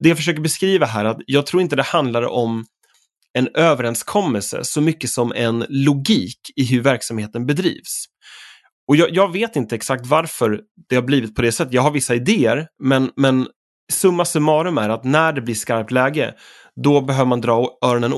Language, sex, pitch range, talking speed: Swedish, male, 115-150 Hz, 190 wpm